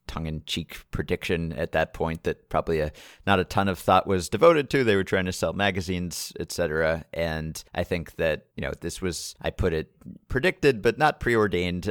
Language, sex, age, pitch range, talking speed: English, male, 30-49, 90-110 Hz, 200 wpm